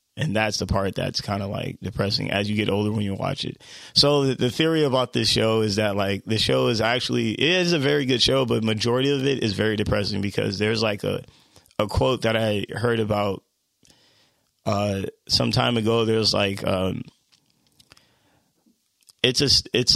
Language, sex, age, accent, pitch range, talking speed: English, male, 20-39, American, 100-120 Hz, 190 wpm